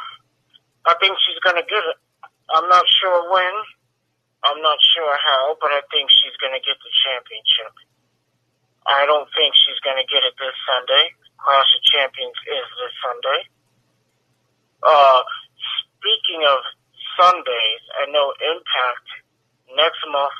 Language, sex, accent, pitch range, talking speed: English, male, American, 140-235 Hz, 135 wpm